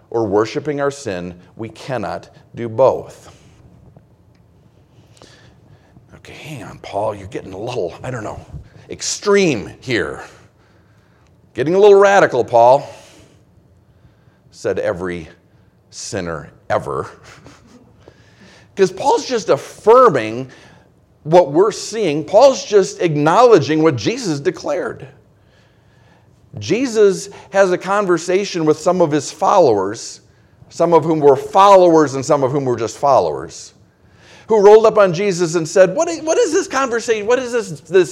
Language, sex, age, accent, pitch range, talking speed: English, male, 50-69, American, 150-210 Hz, 125 wpm